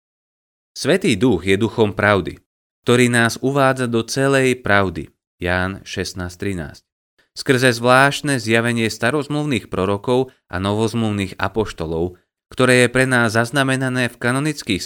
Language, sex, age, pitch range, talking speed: Slovak, male, 30-49, 90-120 Hz, 115 wpm